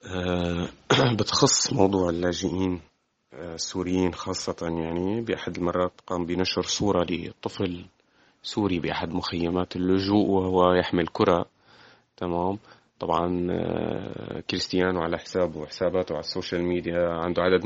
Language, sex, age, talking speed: Arabic, male, 30-49, 100 wpm